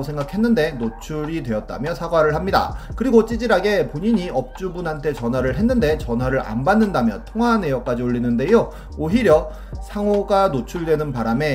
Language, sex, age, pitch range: Korean, male, 30-49, 120-200 Hz